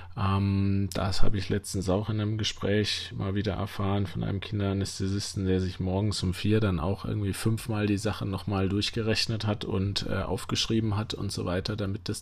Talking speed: 175 wpm